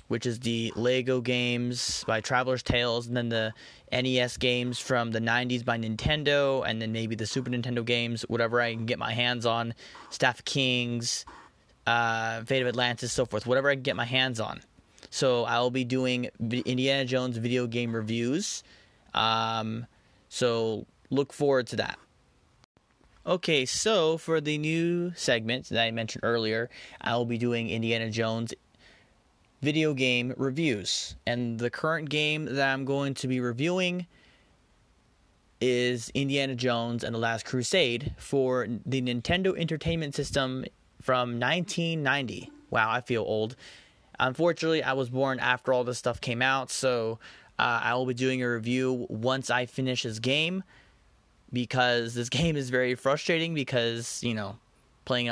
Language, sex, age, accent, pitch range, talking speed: English, male, 20-39, American, 115-135 Hz, 155 wpm